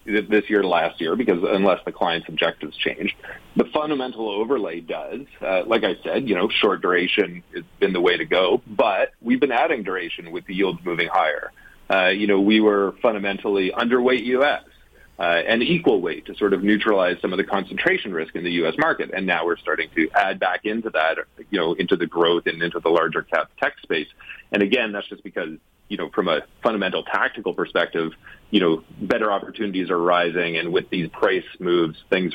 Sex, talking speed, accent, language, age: male, 200 wpm, American, English, 40-59